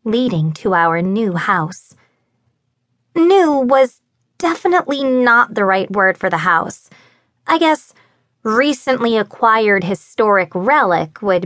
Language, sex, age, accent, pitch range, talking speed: English, female, 20-39, American, 175-230 Hz, 115 wpm